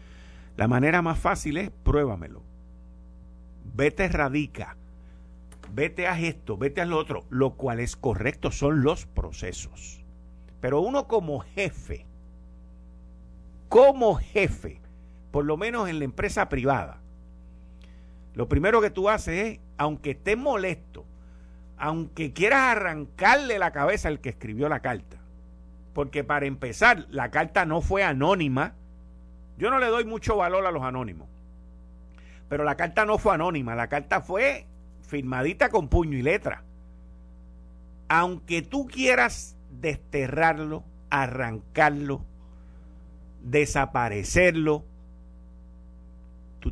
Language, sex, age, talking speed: Spanish, male, 50-69, 120 wpm